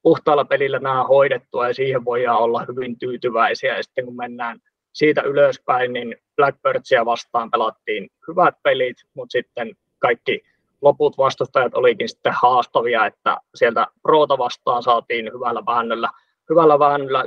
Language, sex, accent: Finnish, male, native